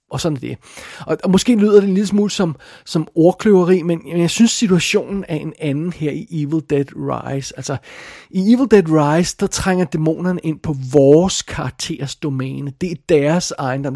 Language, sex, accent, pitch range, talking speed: Danish, male, native, 145-185 Hz, 180 wpm